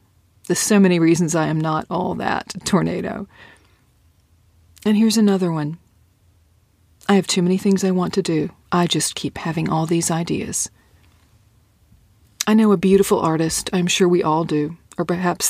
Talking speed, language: 165 wpm, English